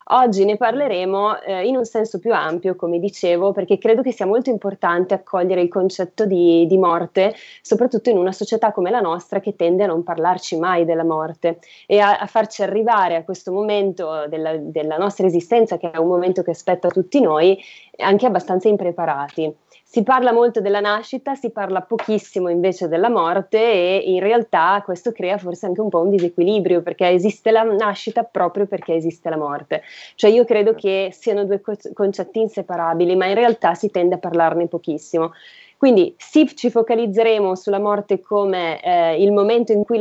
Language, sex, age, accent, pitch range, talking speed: Italian, female, 20-39, native, 175-215 Hz, 180 wpm